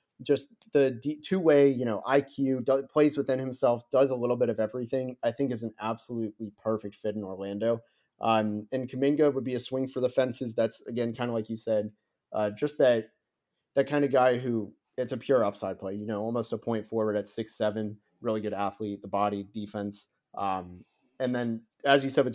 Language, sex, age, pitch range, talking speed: English, male, 30-49, 110-130 Hz, 205 wpm